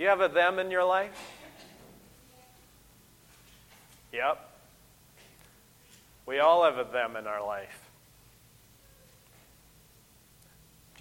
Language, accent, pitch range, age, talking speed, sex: English, American, 125-175 Hz, 30-49, 100 wpm, male